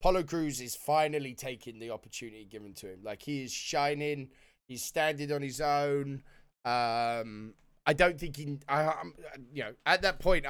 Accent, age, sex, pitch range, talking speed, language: British, 20-39, male, 105-140 Hz, 170 wpm, English